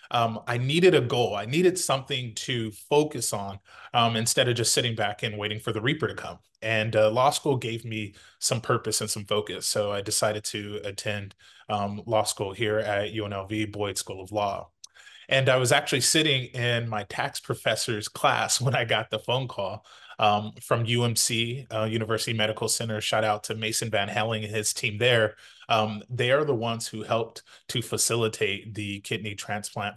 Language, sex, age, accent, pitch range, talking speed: English, male, 20-39, American, 105-130 Hz, 190 wpm